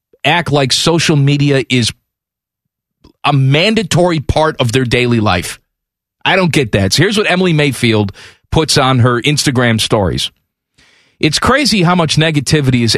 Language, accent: English, American